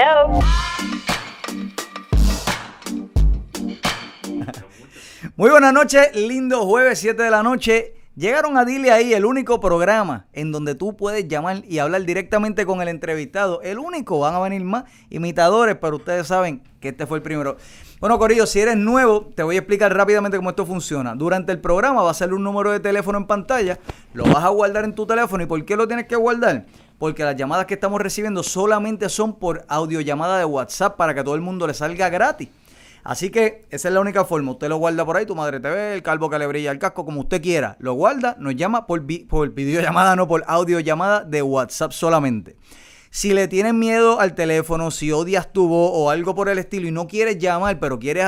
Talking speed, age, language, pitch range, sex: 200 wpm, 30-49, Spanish, 160-210 Hz, male